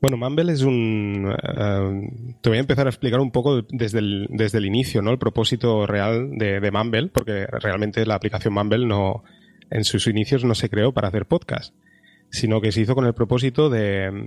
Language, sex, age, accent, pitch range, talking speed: Spanish, male, 20-39, Spanish, 105-125 Hz, 200 wpm